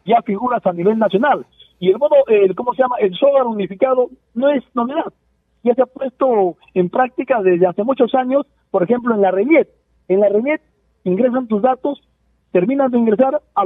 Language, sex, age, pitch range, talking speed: Spanish, male, 50-69, 195-275 Hz, 190 wpm